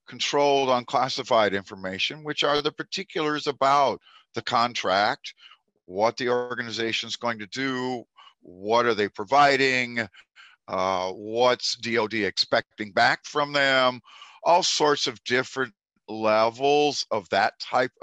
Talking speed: 115 wpm